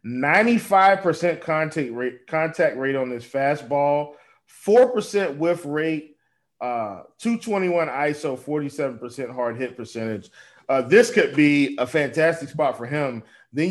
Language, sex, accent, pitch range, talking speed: English, male, American, 135-170 Hz, 120 wpm